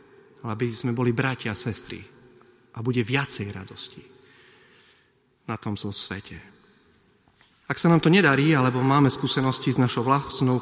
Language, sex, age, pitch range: Slovak, male, 40-59, 125-180 Hz